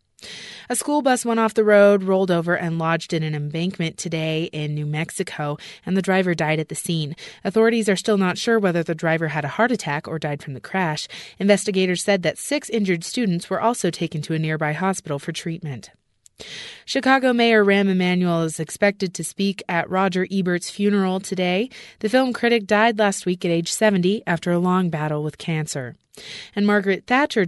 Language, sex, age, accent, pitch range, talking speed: English, female, 30-49, American, 160-210 Hz, 190 wpm